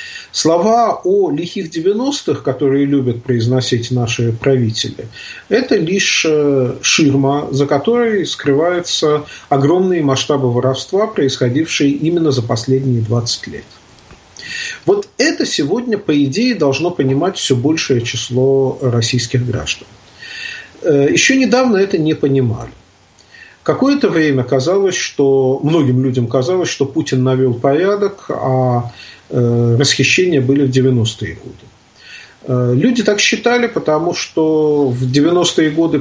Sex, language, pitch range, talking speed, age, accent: male, Russian, 130-175 Hz, 110 wpm, 40-59, native